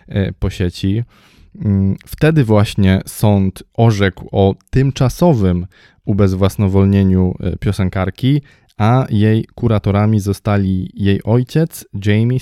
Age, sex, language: 20-39, male, Polish